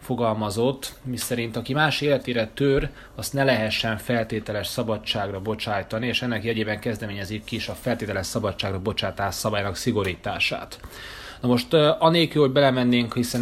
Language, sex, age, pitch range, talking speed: Hungarian, male, 30-49, 105-125 Hz, 135 wpm